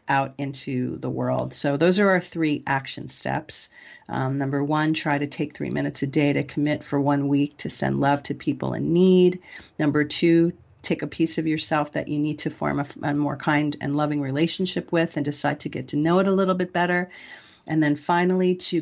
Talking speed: 215 wpm